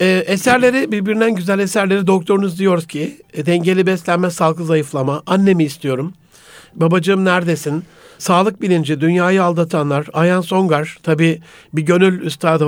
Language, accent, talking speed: Turkish, native, 120 wpm